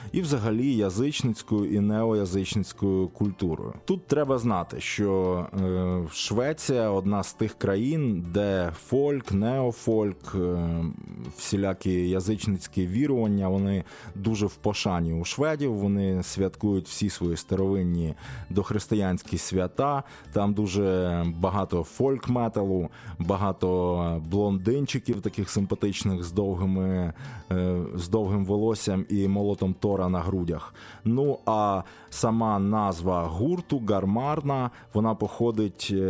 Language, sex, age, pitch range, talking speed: Ukrainian, male, 20-39, 95-110 Hz, 100 wpm